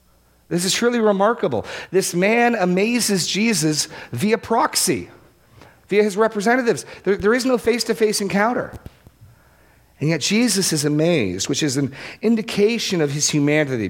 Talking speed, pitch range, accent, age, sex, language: 135 wpm, 145-205 Hz, American, 40-59, male, English